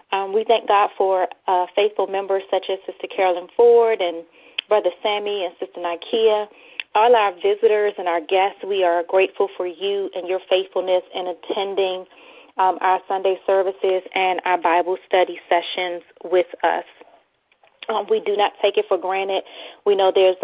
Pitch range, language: 185-220 Hz, English